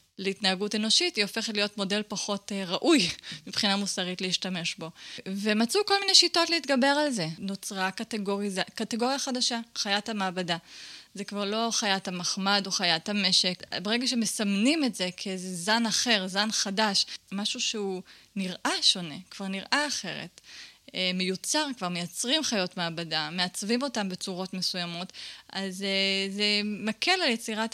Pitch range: 185-225 Hz